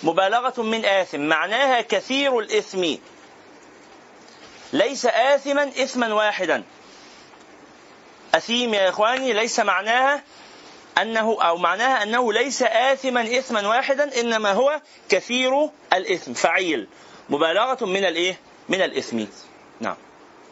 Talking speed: 100 wpm